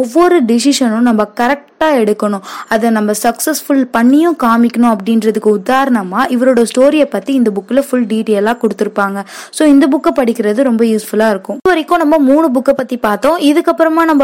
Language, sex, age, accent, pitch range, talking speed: Tamil, female, 20-39, native, 220-280 Hz, 70 wpm